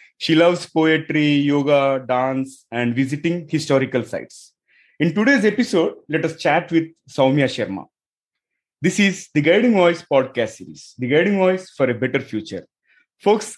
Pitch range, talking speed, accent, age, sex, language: 135-175 Hz, 145 wpm, Indian, 30-49, male, English